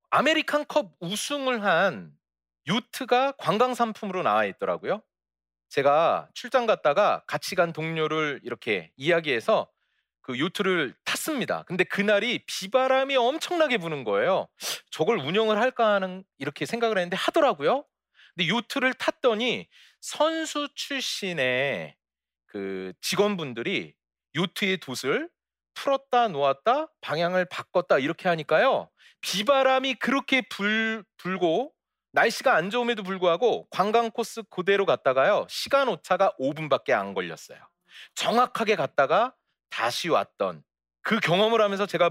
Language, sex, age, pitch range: Korean, male, 40-59, 170-245 Hz